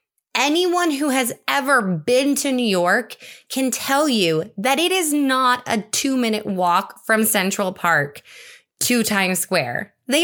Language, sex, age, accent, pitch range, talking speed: English, female, 20-39, American, 185-255 Hz, 145 wpm